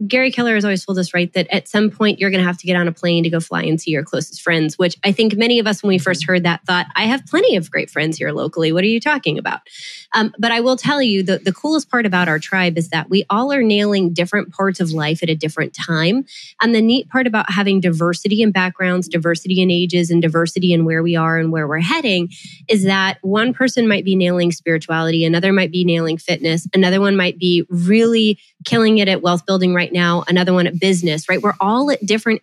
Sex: female